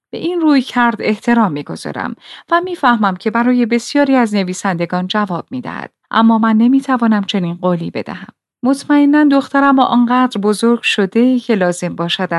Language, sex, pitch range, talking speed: Persian, female, 190-250 Hz, 155 wpm